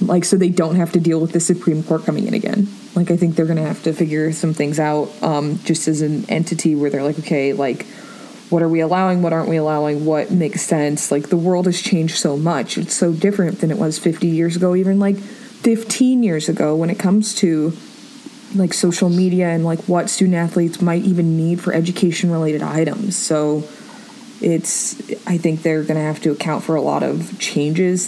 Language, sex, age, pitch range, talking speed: English, female, 20-39, 160-210 Hz, 215 wpm